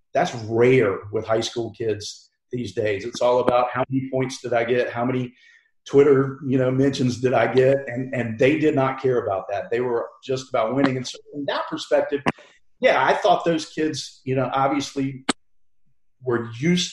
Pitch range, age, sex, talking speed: 120-140 Hz, 40-59, male, 190 wpm